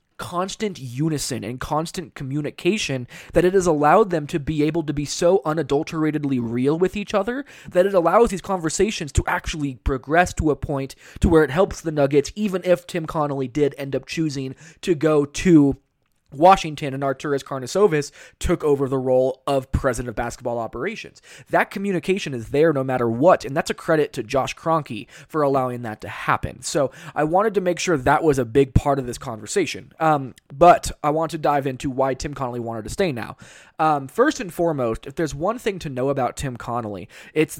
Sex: male